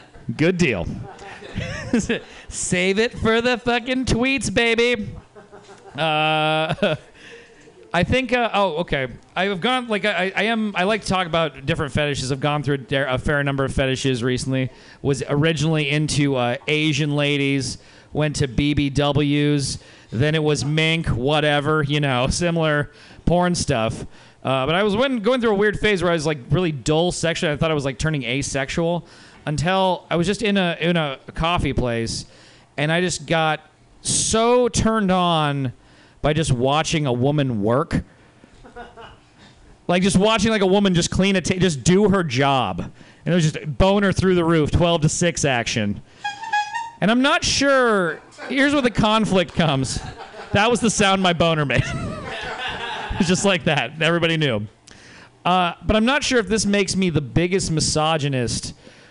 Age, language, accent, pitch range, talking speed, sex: 40-59, English, American, 145-195 Hz, 170 wpm, male